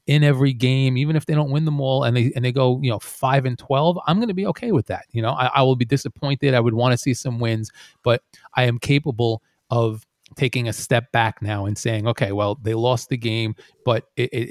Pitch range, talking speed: 115-140 Hz, 255 wpm